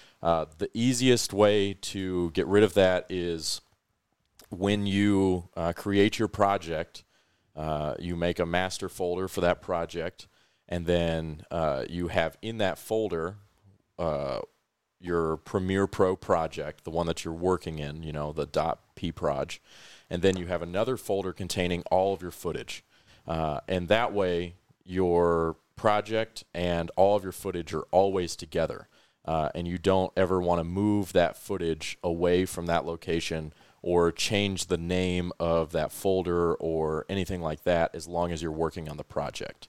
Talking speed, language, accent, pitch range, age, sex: 160 wpm, English, American, 85-95 Hz, 40-59, male